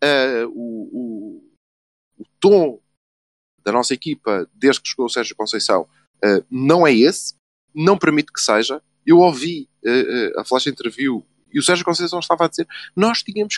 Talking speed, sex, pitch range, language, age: 170 wpm, male, 155-250 Hz, Portuguese, 20-39